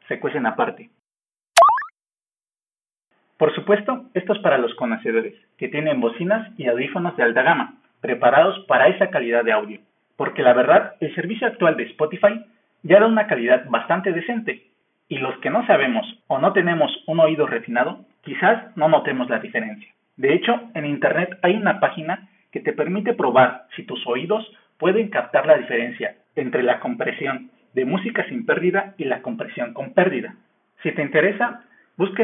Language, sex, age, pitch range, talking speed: Spanish, male, 40-59, 155-220 Hz, 170 wpm